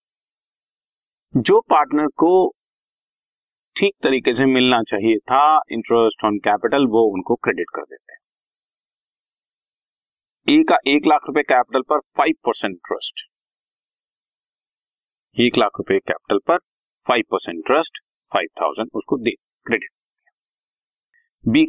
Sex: male